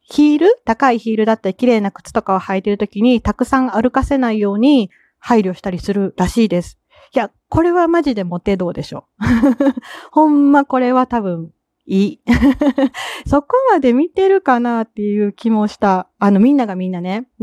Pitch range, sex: 190-260 Hz, female